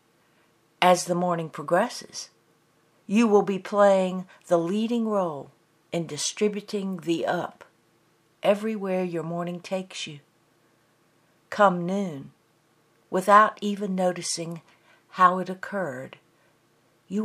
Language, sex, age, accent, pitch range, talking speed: English, female, 60-79, American, 155-190 Hz, 100 wpm